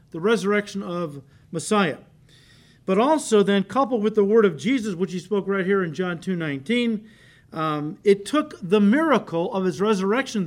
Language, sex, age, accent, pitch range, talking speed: English, male, 50-69, American, 145-215 Hz, 170 wpm